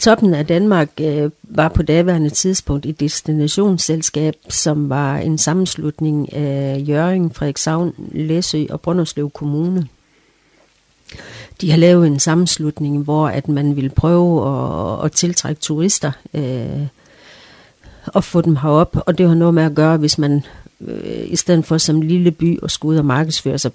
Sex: female